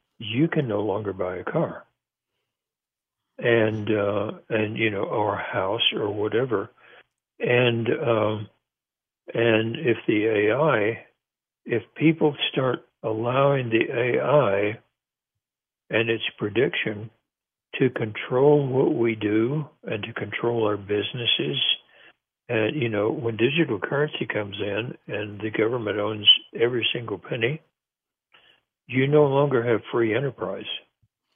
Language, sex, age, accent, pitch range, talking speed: English, male, 60-79, American, 110-130 Hz, 120 wpm